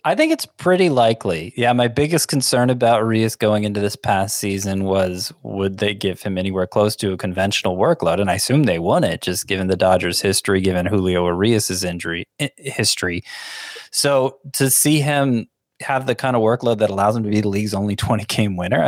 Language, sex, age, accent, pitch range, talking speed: English, male, 20-39, American, 100-135 Hz, 195 wpm